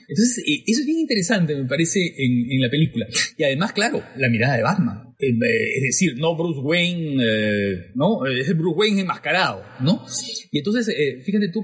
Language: Spanish